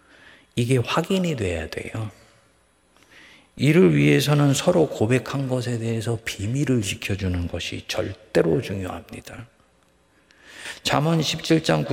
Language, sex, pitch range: Korean, male, 105-160 Hz